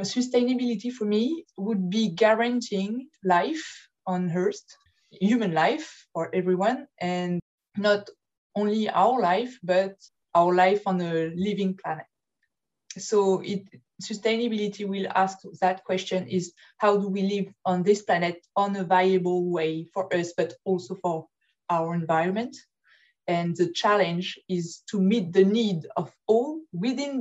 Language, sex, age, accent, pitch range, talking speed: English, female, 20-39, French, 180-215 Hz, 135 wpm